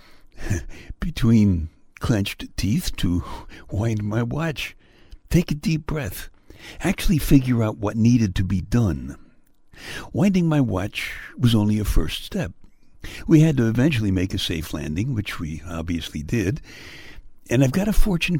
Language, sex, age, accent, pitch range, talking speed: English, male, 60-79, American, 90-130 Hz, 145 wpm